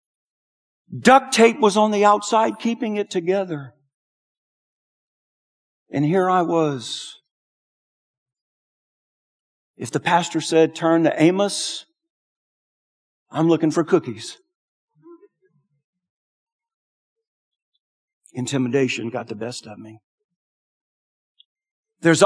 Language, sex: English, male